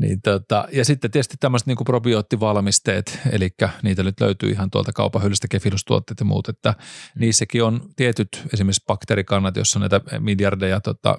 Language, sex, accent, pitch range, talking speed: Finnish, male, native, 100-120 Hz, 155 wpm